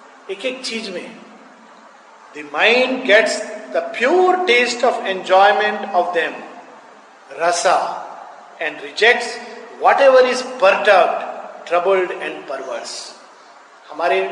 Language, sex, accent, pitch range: Hindi, male, native, 175-245 Hz